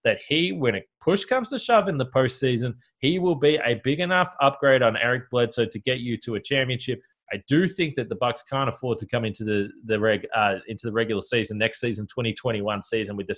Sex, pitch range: male, 110-155 Hz